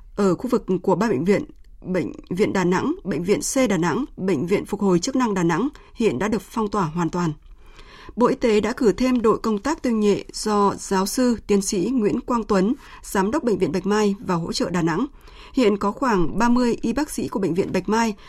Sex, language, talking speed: female, Vietnamese, 240 wpm